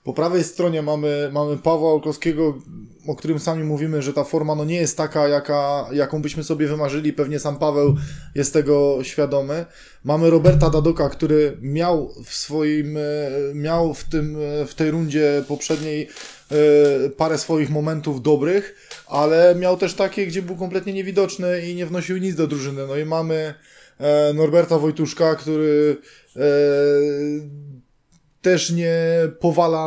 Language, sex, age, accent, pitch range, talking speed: Polish, male, 20-39, native, 145-165 Hz, 145 wpm